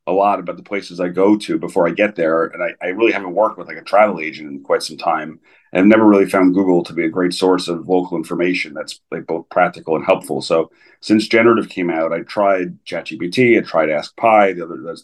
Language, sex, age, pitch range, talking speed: English, male, 30-49, 90-100 Hz, 245 wpm